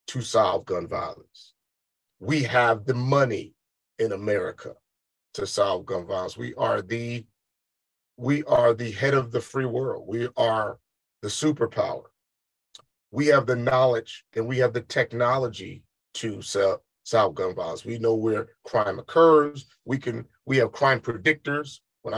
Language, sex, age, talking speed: English, male, 30-49, 150 wpm